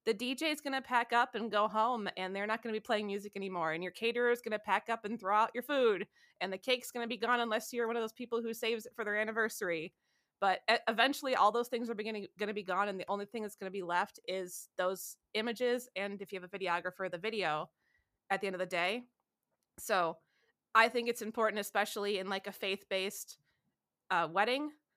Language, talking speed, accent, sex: English, 240 wpm, American, female